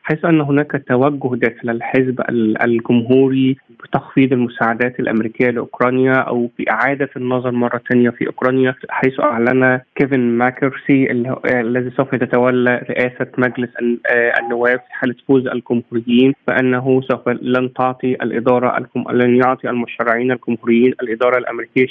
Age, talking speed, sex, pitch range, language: 20-39, 120 wpm, male, 120-130 Hz, Arabic